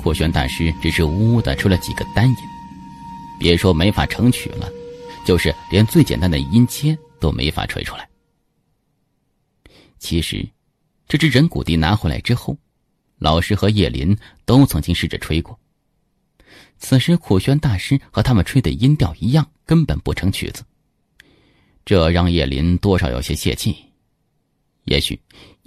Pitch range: 80-130 Hz